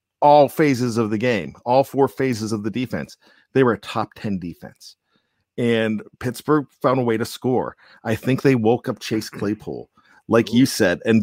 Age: 40-59